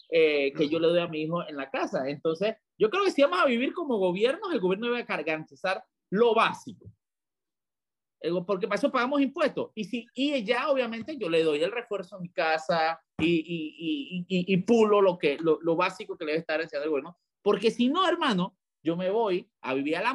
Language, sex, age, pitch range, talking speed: Spanish, male, 30-49, 175-245 Hz, 215 wpm